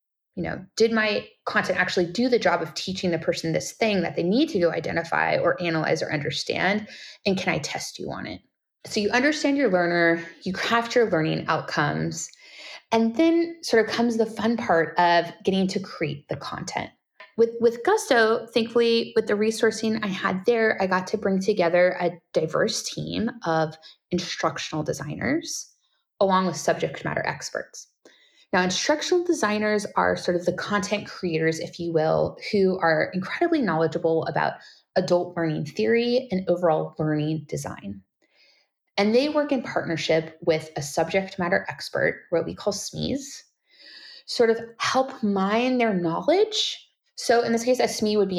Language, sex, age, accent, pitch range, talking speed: English, female, 20-39, American, 170-230 Hz, 165 wpm